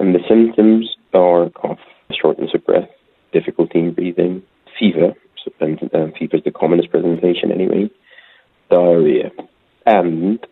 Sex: male